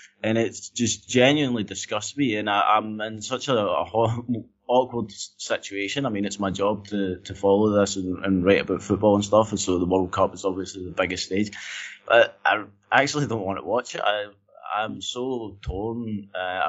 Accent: British